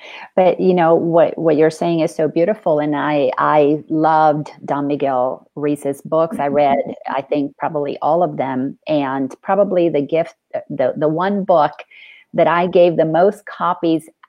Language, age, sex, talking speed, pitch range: English, 40-59, female, 170 wpm, 155-195 Hz